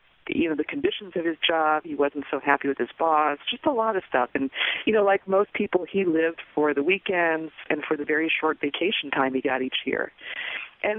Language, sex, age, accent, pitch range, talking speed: English, female, 40-59, American, 145-180 Hz, 230 wpm